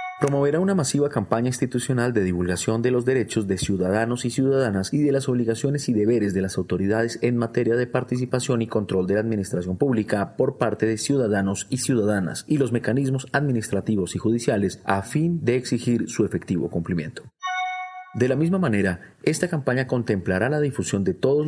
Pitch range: 100-135 Hz